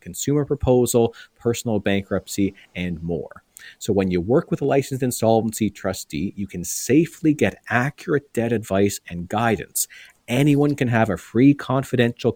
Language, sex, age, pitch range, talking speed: English, male, 40-59, 105-125 Hz, 145 wpm